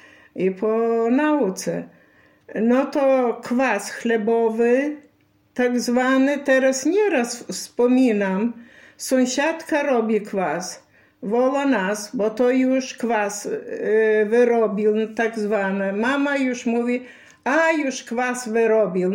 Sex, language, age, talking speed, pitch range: female, Polish, 60-79, 95 wpm, 215-265 Hz